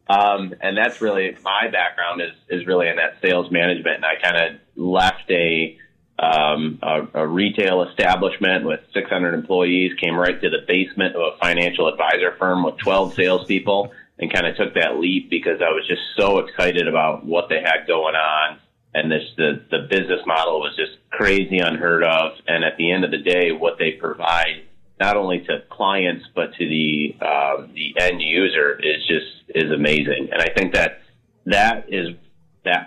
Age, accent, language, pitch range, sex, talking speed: 30-49, American, English, 80-100 Hz, male, 185 wpm